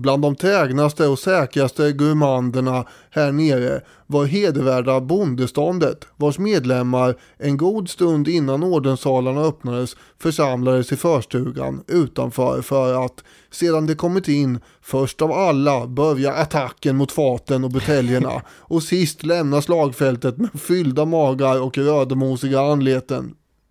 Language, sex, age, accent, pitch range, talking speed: English, male, 20-39, Swedish, 130-155 Hz, 120 wpm